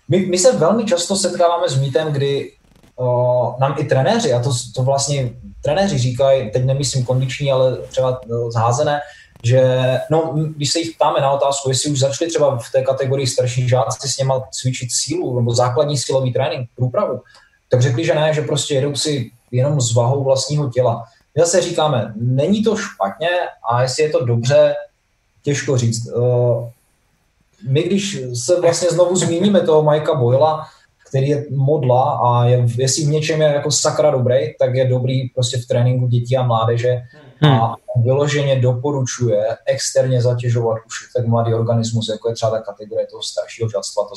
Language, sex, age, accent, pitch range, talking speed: Czech, male, 20-39, native, 120-145 Hz, 175 wpm